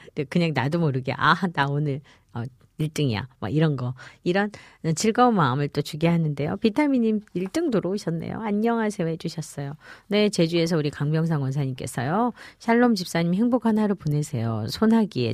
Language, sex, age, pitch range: Korean, female, 40-59, 135-200 Hz